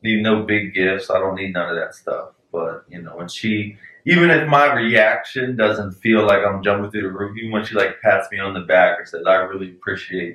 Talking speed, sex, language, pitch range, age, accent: 245 wpm, male, English, 90-110 Hz, 20-39, American